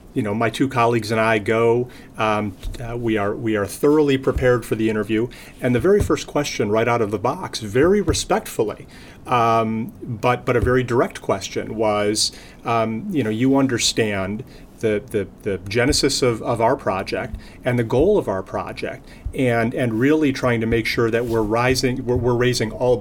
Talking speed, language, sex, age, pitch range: 190 wpm, English, male, 40-59, 105-125 Hz